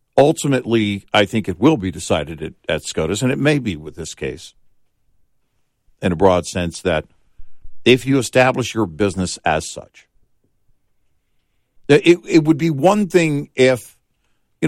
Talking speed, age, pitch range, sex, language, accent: 145 wpm, 50-69, 95-120 Hz, male, English, American